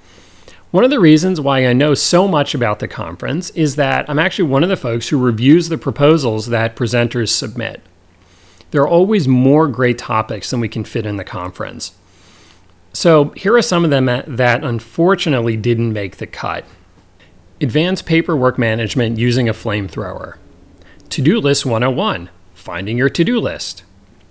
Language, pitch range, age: English, 95-145 Hz, 40-59